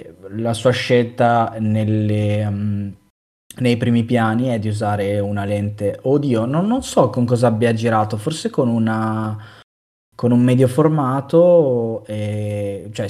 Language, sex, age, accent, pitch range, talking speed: Italian, male, 20-39, native, 105-130 Hz, 135 wpm